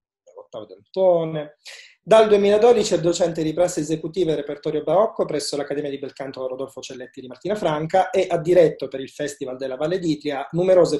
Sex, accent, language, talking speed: male, native, Italian, 160 wpm